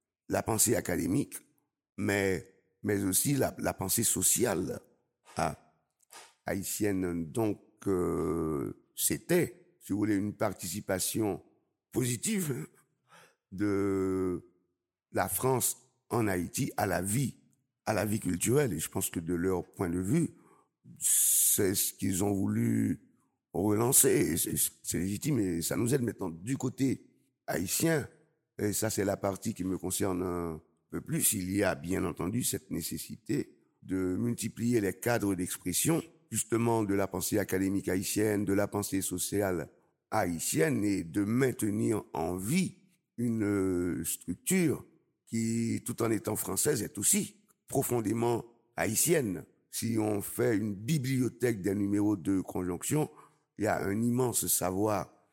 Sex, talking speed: male, 135 wpm